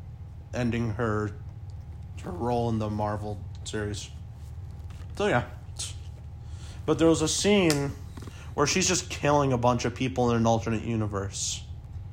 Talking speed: 135 wpm